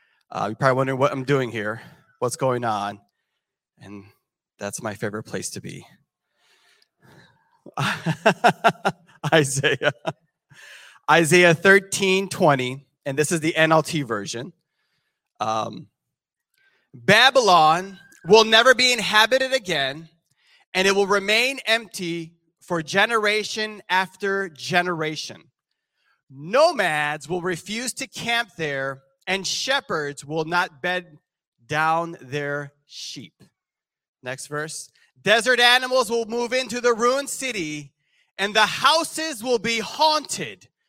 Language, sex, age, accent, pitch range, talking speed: English, male, 30-49, American, 150-230 Hz, 110 wpm